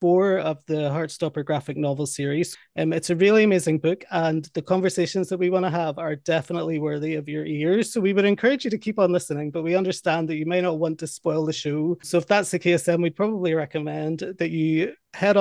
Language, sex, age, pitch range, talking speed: English, male, 30-49, 155-180 Hz, 235 wpm